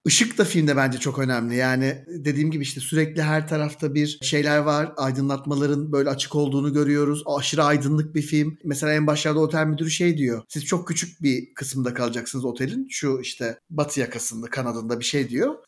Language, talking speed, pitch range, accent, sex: Turkish, 180 wpm, 135-170 Hz, native, male